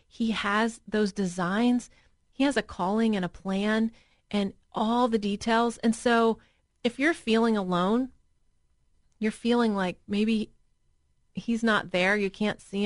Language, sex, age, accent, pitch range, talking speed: English, female, 30-49, American, 195-240 Hz, 145 wpm